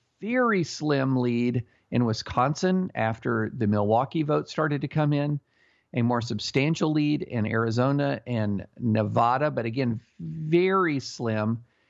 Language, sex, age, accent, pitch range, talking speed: English, male, 50-69, American, 115-150 Hz, 125 wpm